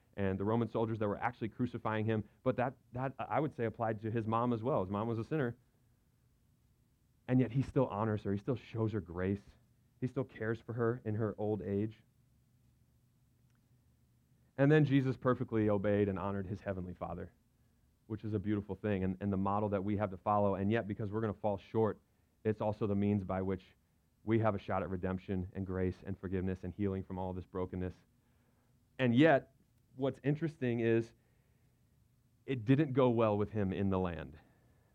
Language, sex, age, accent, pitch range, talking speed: English, male, 30-49, American, 100-125 Hz, 195 wpm